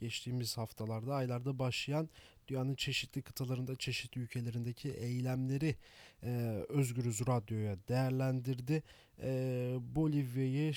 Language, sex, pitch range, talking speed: Turkish, male, 120-140 Hz, 90 wpm